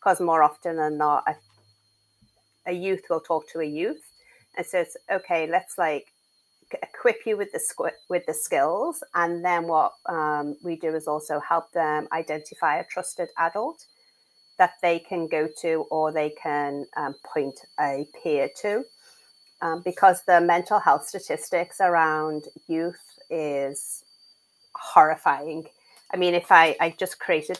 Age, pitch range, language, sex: 30-49, 155-190 Hz, English, female